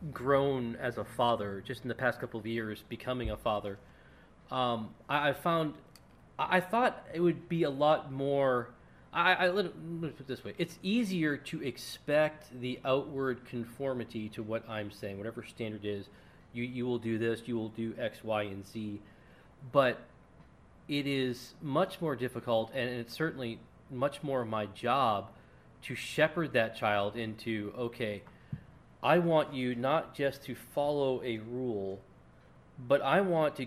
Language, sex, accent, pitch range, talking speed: English, male, American, 110-140 Hz, 165 wpm